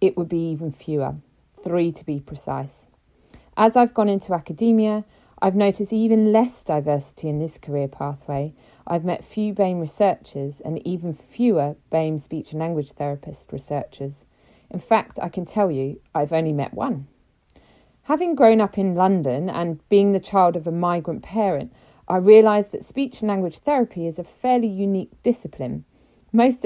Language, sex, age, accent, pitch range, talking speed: English, female, 40-59, British, 155-210 Hz, 165 wpm